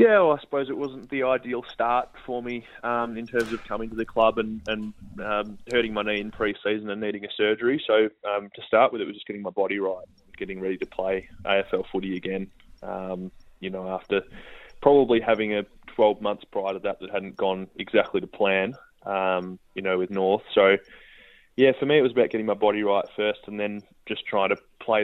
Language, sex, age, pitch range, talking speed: English, male, 20-39, 95-110 Hz, 215 wpm